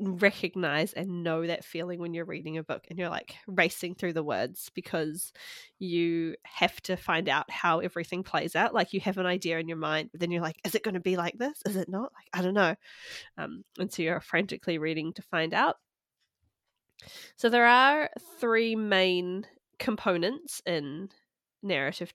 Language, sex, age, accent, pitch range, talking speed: English, female, 20-39, Australian, 170-205 Hz, 190 wpm